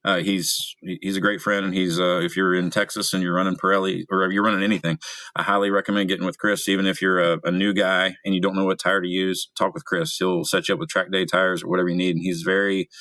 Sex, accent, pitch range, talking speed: male, American, 90-100 Hz, 275 wpm